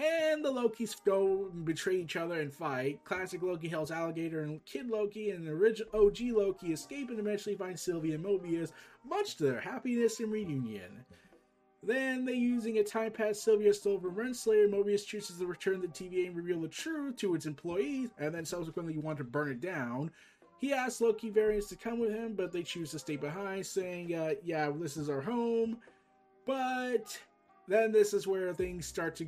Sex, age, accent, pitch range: male, 20-39, American, 155-220 Hz